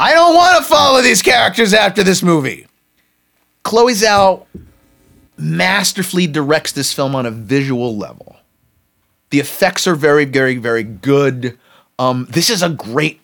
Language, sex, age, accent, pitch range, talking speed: English, male, 30-49, American, 140-220 Hz, 140 wpm